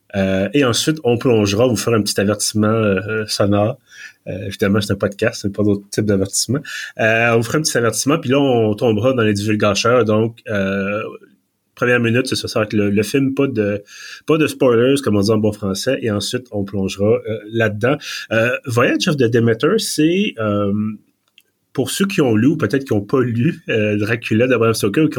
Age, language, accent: 30-49, French, Canadian